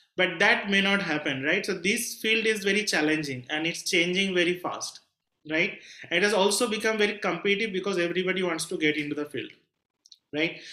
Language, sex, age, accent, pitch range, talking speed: English, male, 30-49, Indian, 165-200 Hz, 185 wpm